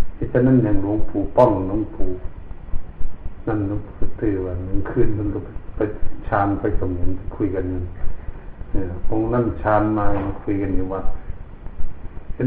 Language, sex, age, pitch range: Thai, male, 60-79, 90-110 Hz